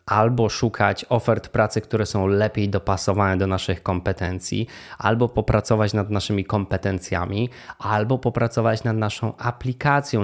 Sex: male